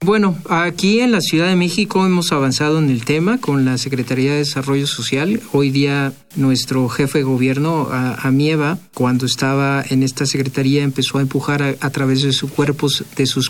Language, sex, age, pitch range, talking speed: Spanish, male, 40-59, 135-160 Hz, 180 wpm